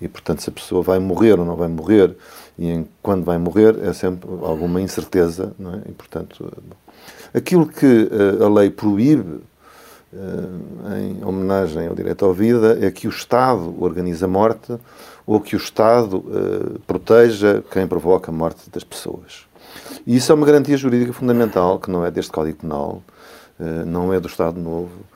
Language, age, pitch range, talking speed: Portuguese, 50-69, 90-115 Hz, 180 wpm